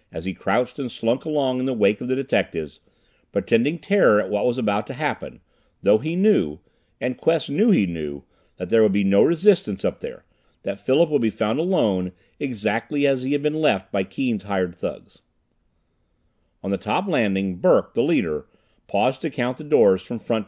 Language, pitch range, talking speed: English, 100-145 Hz, 195 wpm